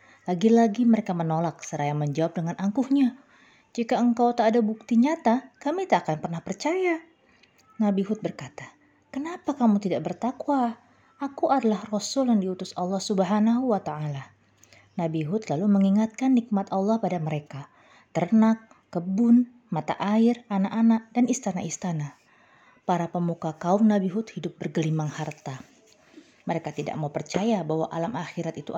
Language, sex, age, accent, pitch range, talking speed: Indonesian, female, 20-39, native, 160-230 Hz, 135 wpm